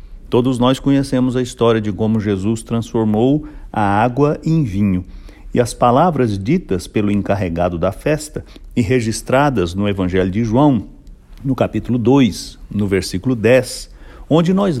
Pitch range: 95-130 Hz